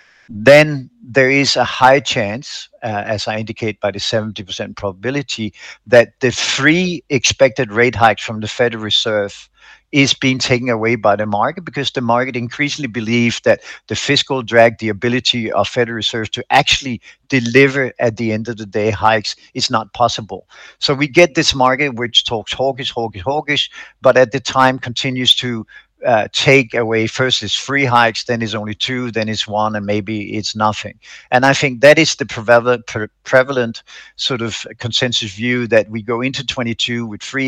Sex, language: male, Czech